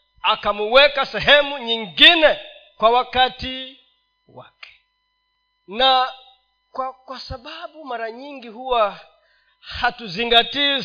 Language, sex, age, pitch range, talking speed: Swahili, male, 40-59, 225-290 Hz, 75 wpm